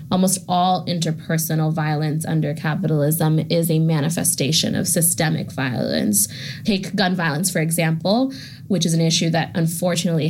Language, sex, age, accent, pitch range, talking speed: English, female, 20-39, American, 155-180 Hz, 135 wpm